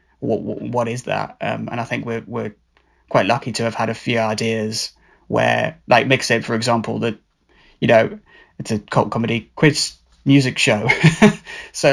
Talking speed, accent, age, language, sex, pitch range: 170 wpm, British, 20-39, English, male, 110-130 Hz